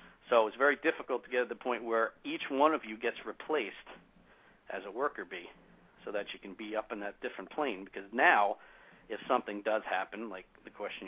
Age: 50-69